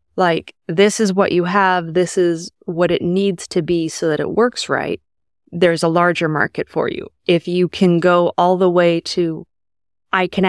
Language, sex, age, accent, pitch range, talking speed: English, female, 20-39, American, 155-180 Hz, 195 wpm